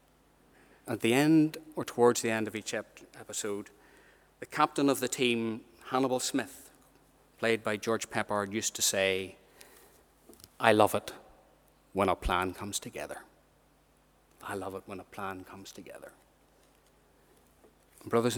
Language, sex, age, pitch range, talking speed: English, male, 30-49, 100-120 Hz, 135 wpm